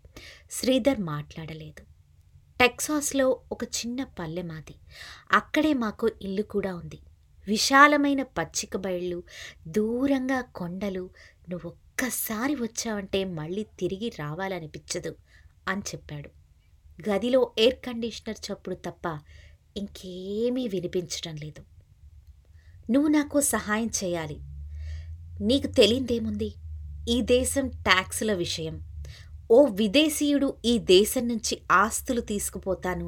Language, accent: Telugu, native